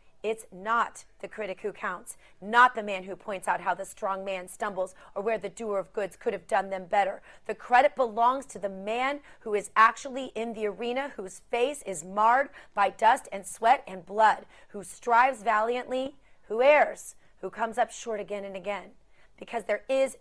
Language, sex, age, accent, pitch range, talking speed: English, female, 30-49, American, 195-230 Hz, 195 wpm